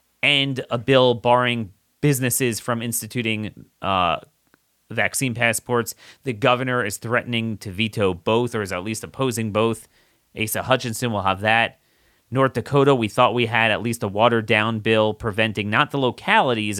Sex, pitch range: male, 110-130 Hz